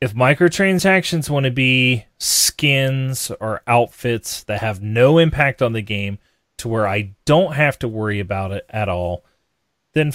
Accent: American